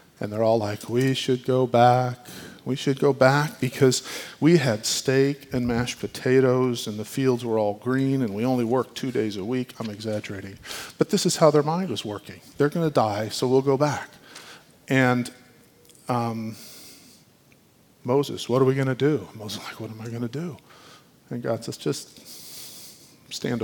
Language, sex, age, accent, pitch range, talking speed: English, male, 40-59, American, 110-135 Hz, 185 wpm